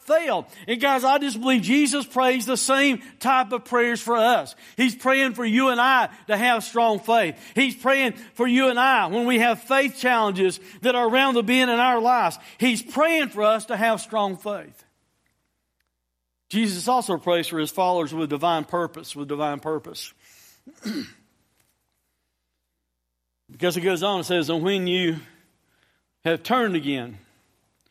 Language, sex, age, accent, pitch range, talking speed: English, male, 60-79, American, 175-265 Hz, 165 wpm